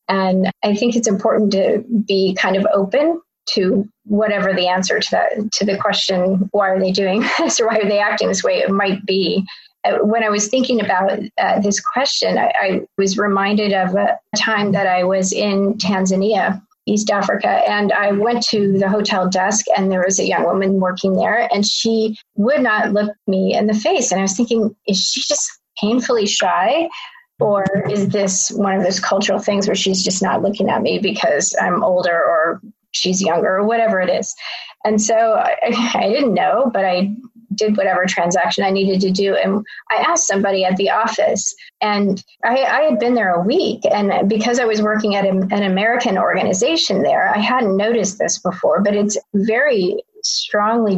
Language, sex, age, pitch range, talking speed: English, female, 30-49, 195-225 Hz, 190 wpm